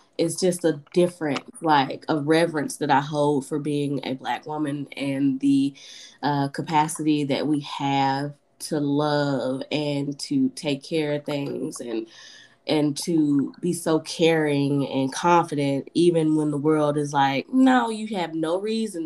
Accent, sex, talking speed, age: American, female, 155 wpm, 20-39